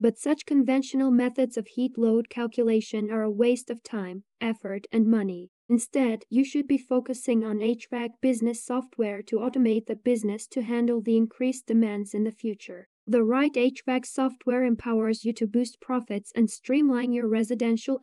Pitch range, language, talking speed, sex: 220-255 Hz, English, 165 wpm, female